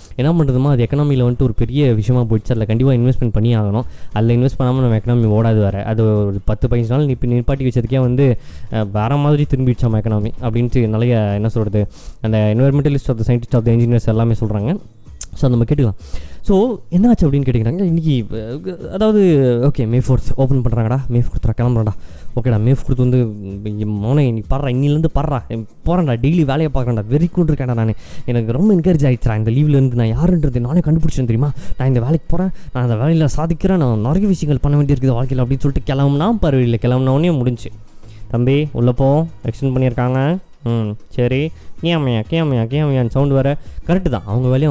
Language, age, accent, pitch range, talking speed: Tamil, 20-39, native, 110-140 Hz, 170 wpm